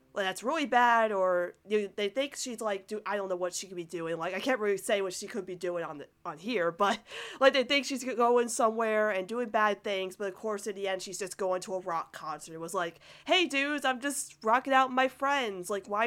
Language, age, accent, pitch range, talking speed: English, 20-39, American, 190-250 Hz, 270 wpm